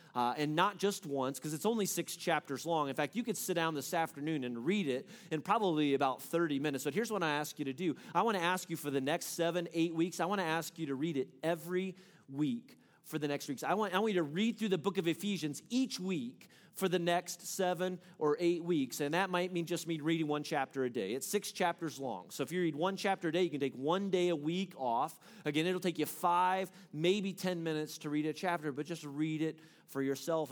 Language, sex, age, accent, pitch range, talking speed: English, male, 30-49, American, 130-175 Hz, 260 wpm